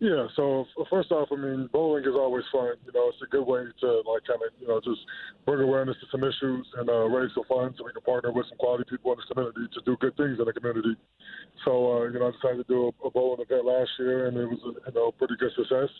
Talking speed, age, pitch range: 275 wpm, 20-39, 120-140 Hz